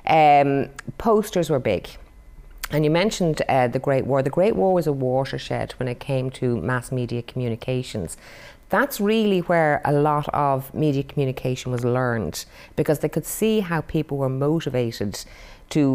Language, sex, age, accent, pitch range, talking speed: English, female, 30-49, Irish, 130-175 Hz, 160 wpm